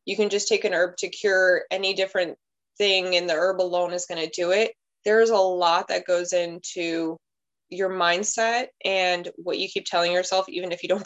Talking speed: 205 wpm